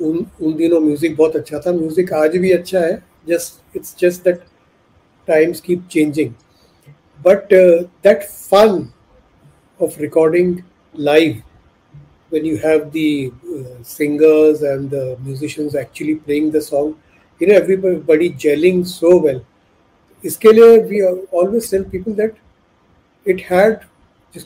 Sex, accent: male, native